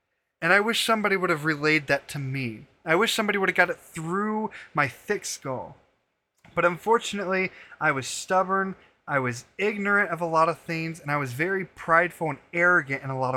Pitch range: 140-185 Hz